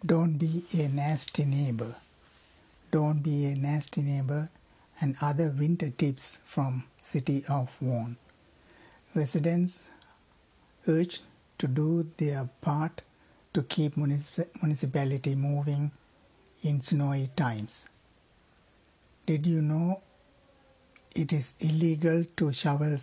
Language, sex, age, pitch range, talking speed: Tamil, male, 60-79, 135-160 Hz, 105 wpm